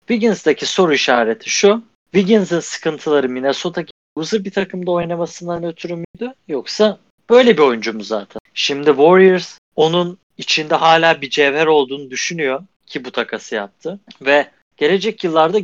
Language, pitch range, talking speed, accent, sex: Turkish, 140-195 Hz, 135 wpm, native, male